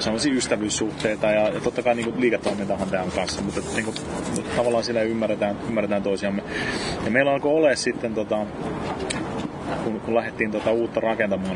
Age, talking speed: 30-49, 165 wpm